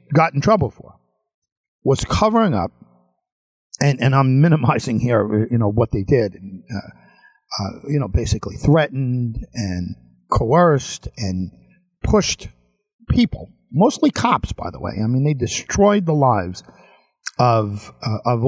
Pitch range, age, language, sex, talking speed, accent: 105-140 Hz, 50-69, English, male, 135 wpm, American